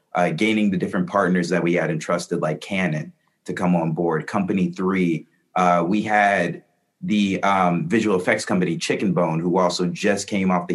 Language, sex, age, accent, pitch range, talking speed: English, male, 30-49, American, 90-105 Hz, 185 wpm